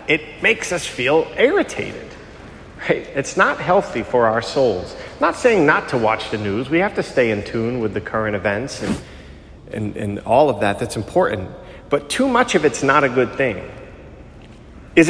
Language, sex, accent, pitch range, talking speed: English, male, American, 105-155 Hz, 190 wpm